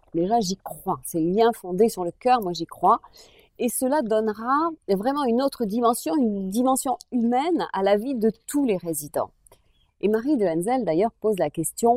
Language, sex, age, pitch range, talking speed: French, female, 40-59, 170-245 Hz, 190 wpm